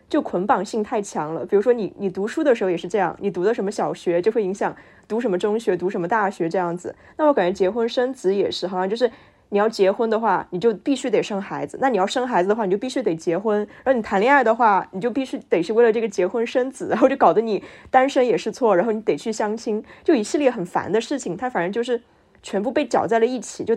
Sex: female